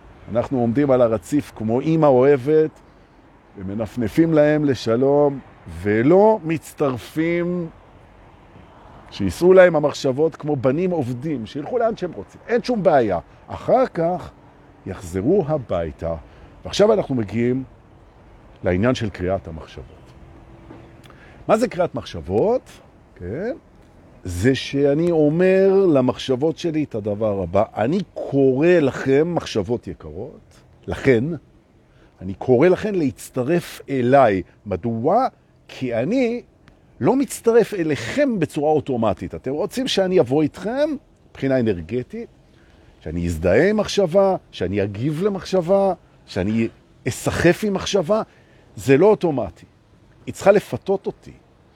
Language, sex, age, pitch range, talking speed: Hebrew, male, 50-69, 110-175 Hz, 100 wpm